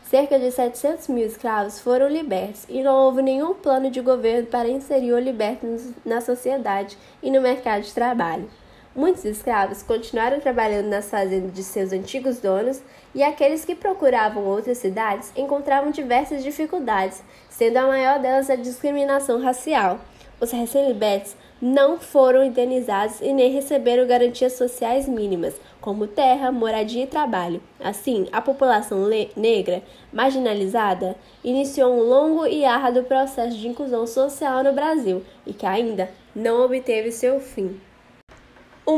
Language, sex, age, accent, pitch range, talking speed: Portuguese, female, 10-29, Brazilian, 220-270 Hz, 140 wpm